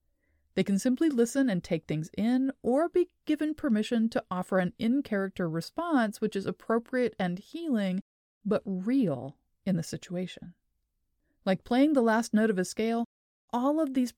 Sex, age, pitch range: female, 30-49, 185-245 Hz